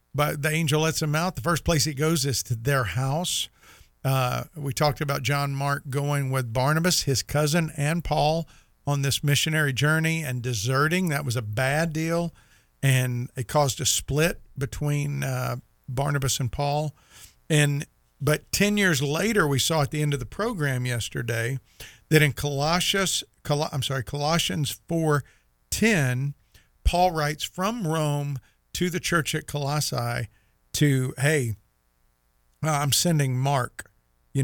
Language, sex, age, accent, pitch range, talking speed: English, male, 50-69, American, 120-150 Hz, 150 wpm